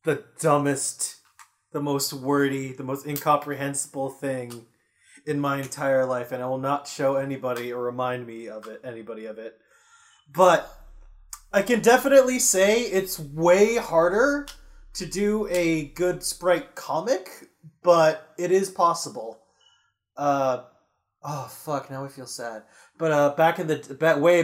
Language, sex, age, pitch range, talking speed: English, male, 20-39, 135-200 Hz, 145 wpm